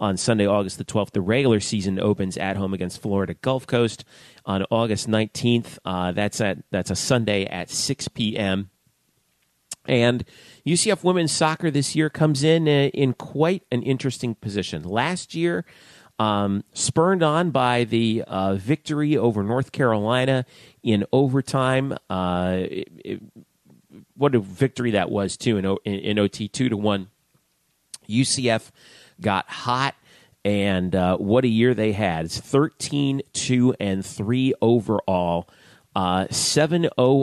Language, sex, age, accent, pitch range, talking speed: English, male, 40-59, American, 100-130 Hz, 145 wpm